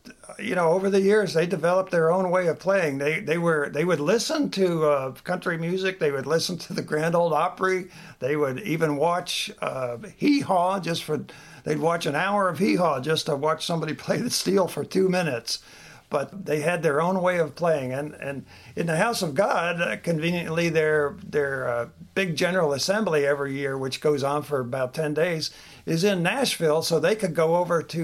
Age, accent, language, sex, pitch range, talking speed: 60-79, American, English, male, 140-175 Hz, 205 wpm